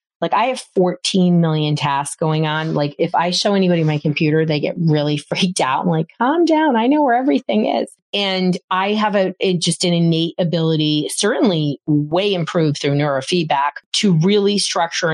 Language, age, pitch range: English, 30-49, 155-190 Hz